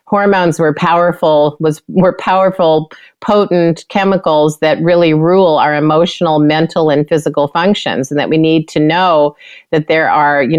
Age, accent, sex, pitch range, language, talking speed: 40-59, American, female, 145-165 Hz, English, 155 wpm